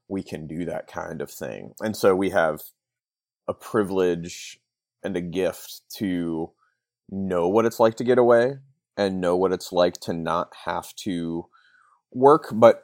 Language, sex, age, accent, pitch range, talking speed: English, male, 30-49, American, 85-105 Hz, 165 wpm